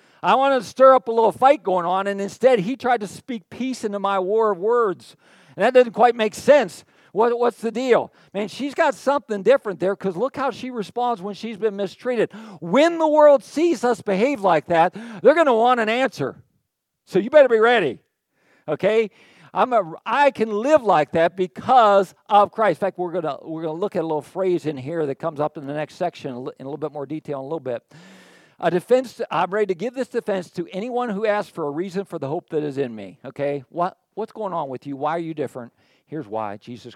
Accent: American